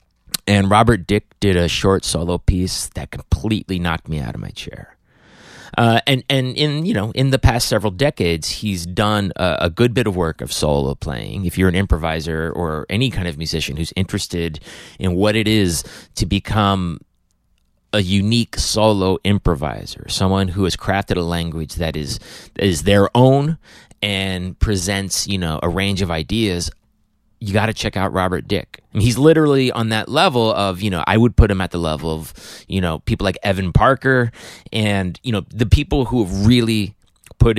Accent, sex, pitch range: American, male, 85-115 Hz